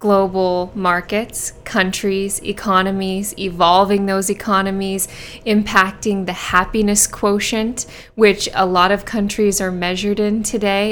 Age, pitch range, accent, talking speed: 20-39, 195-220 Hz, American, 110 wpm